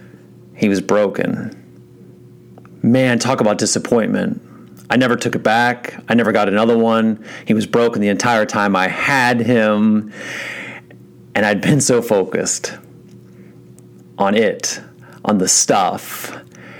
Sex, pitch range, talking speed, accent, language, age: male, 105-145 Hz, 130 wpm, American, English, 40-59